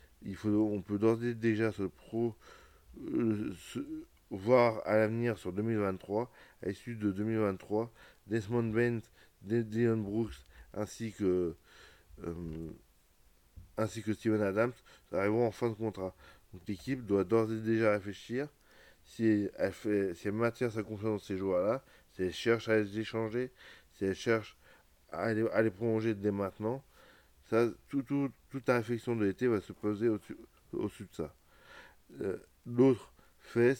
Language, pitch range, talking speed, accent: French, 100-115 Hz, 155 wpm, French